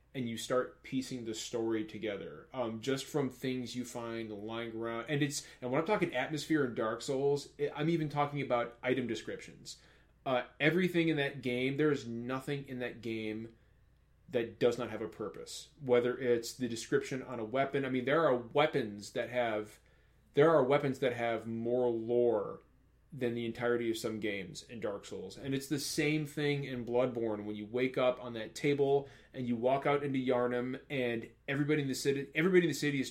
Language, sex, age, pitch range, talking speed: English, male, 30-49, 120-140 Hz, 195 wpm